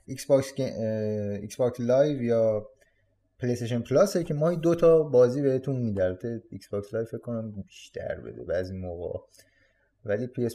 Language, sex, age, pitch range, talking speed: Persian, male, 30-49, 105-135 Hz, 140 wpm